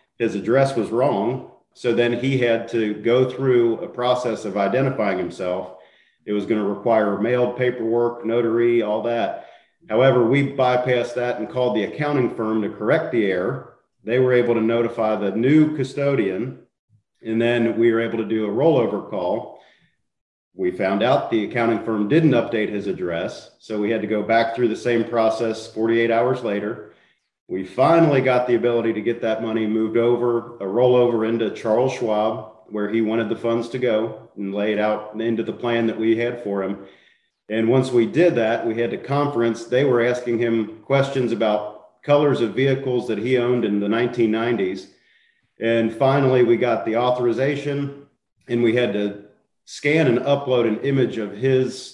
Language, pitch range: English, 110-125 Hz